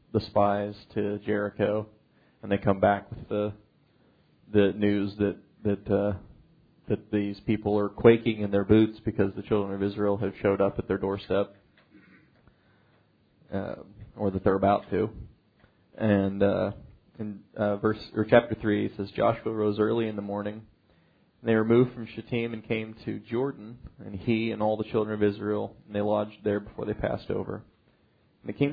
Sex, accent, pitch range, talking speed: male, American, 100-115 Hz, 175 wpm